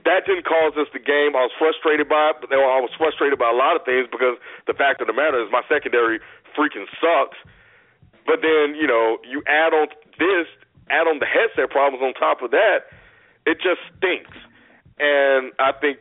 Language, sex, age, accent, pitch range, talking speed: English, male, 40-59, American, 115-140 Hz, 210 wpm